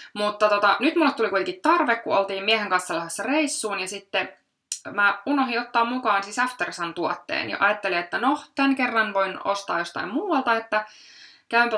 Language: Finnish